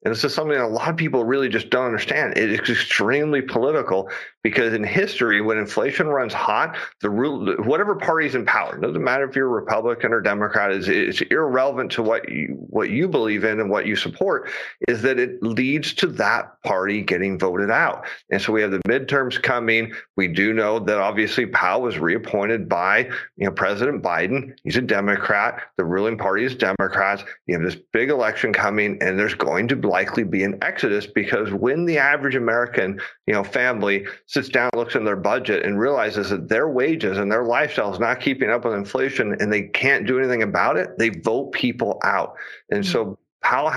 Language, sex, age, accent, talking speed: English, male, 40-59, American, 200 wpm